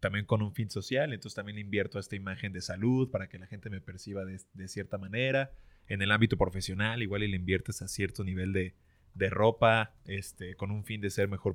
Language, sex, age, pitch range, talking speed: Spanish, male, 20-39, 95-110 Hz, 230 wpm